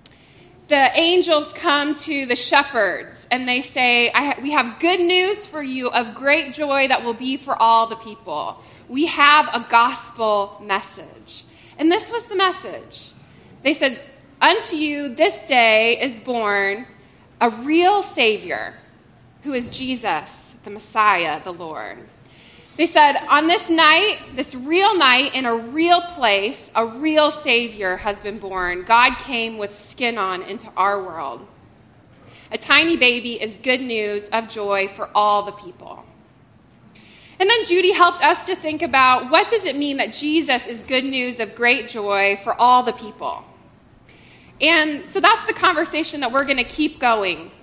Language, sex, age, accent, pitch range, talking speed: English, female, 20-39, American, 220-310 Hz, 160 wpm